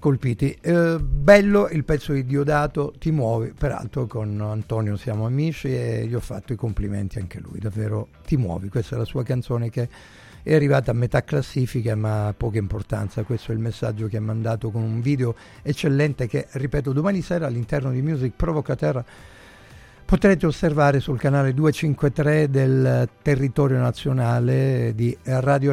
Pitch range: 115-140 Hz